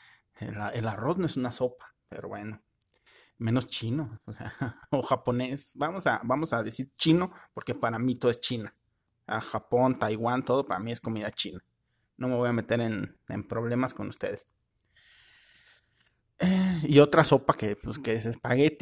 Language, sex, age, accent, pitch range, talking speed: Spanish, male, 30-49, Mexican, 115-135 Hz, 165 wpm